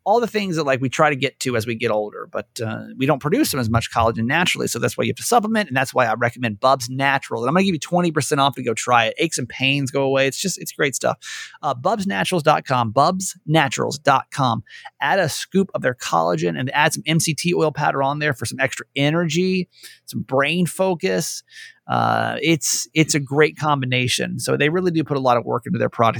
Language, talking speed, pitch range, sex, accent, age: English, 230 wpm, 120-175 Hz, male, American, 30-49